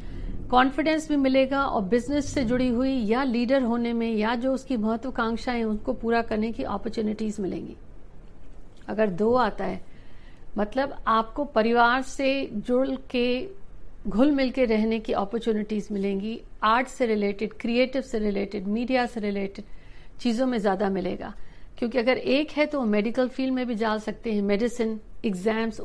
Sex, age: female, 60-79